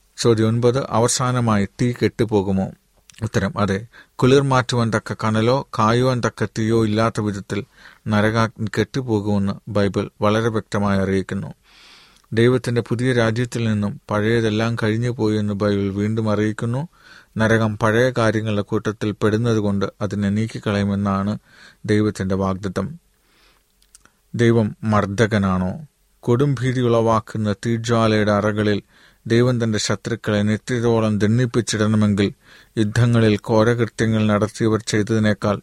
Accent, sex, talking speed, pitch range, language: native, male, 95 wpm, 105-115 Hz, Malayalam